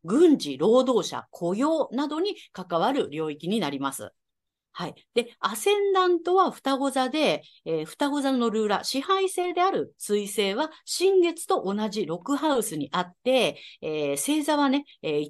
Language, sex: Japanese, female